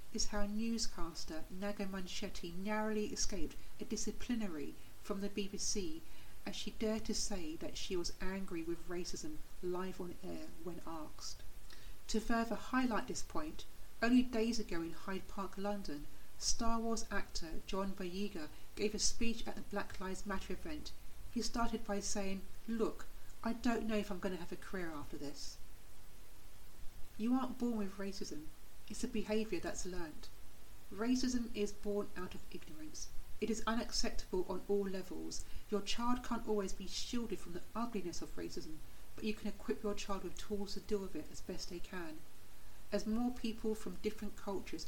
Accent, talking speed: British, 165 wpm